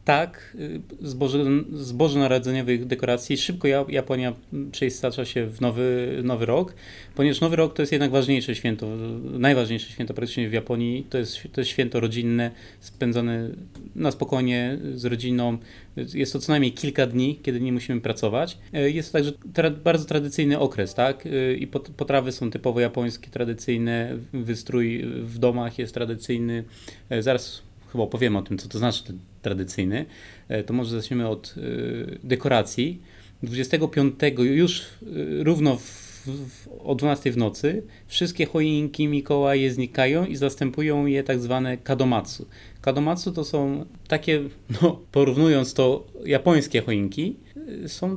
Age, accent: 30-49, native